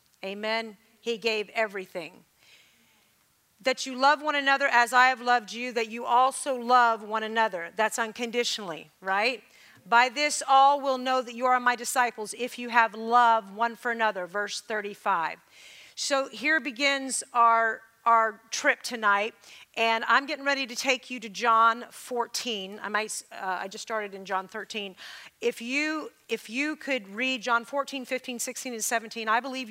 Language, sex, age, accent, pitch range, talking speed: English, female, 40-59, American, 215-250 Hz, 165 wpm